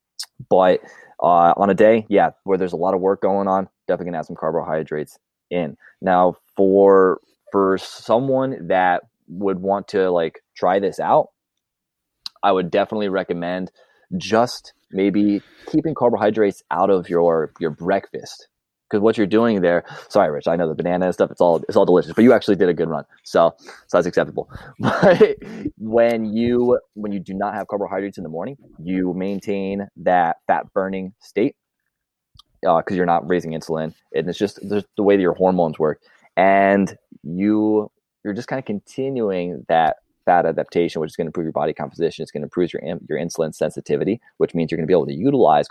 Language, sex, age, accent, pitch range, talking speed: English, male, 20-39, American, 95-110 Hz, 190 wpm